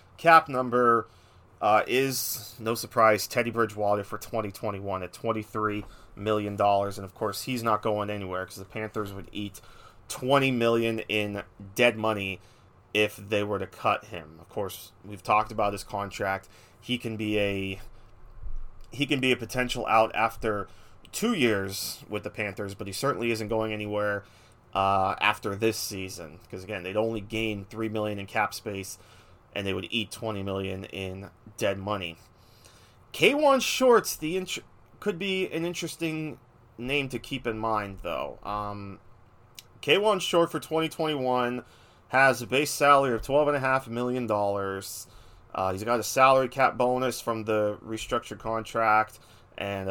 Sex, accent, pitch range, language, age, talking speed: male, American, 100-120 Hz, English, 30-49, 160 wpm